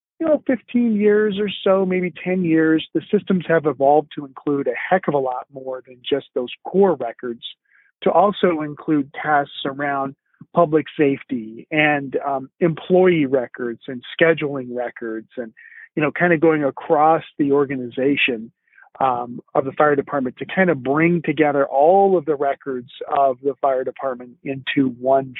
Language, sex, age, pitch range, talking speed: English, male, 40-59, 135-170 Hz, 160 wpm